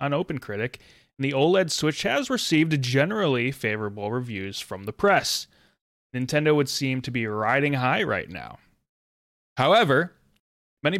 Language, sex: English, male